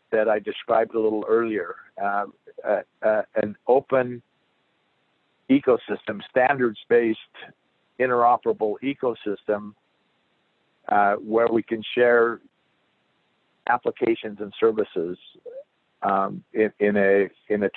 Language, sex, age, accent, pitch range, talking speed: English, male, 50-69, American, 105-130 Hz, 90 wpm